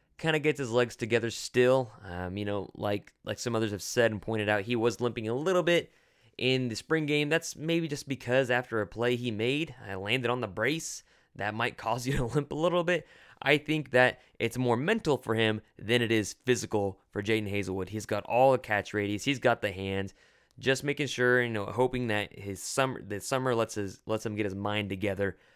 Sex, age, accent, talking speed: male, 20-39, American, 225 wpm